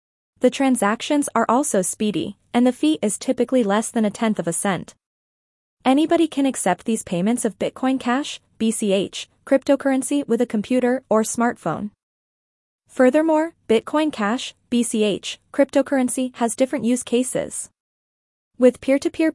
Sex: female